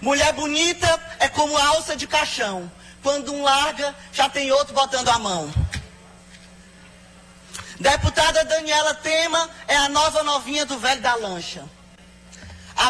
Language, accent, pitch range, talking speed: Portuguese, Brazilian, 210-300 Hz, 130 wpm